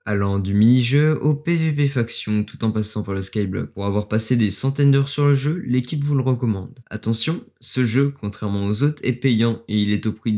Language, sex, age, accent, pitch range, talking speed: French, male, 20-39, French, 105-140 Hz, 220 wpm